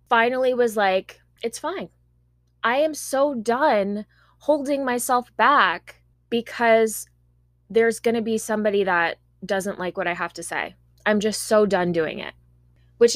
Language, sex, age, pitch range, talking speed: English, female, 20-39, 170-235 Hz, 150 wpm